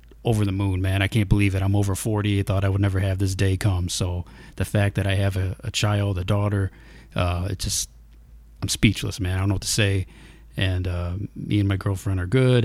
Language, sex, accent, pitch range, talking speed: English, male, American, 95-110 Hz, 240 wpm